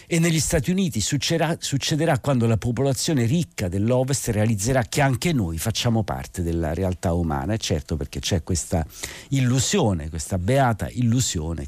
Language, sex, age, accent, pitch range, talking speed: Italian, male, 50-69, native, 90-130 Hz, 150 wpm